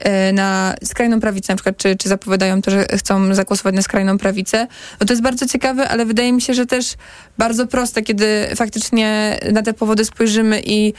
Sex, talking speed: female, 185 wpm